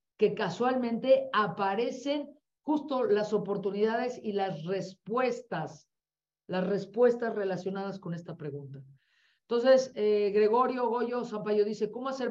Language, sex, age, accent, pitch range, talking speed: Spanish, female, 40-59, Mexican, 180-220 Hz, 110 wpm